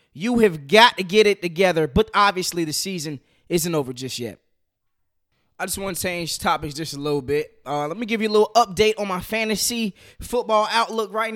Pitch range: 160-220 Hz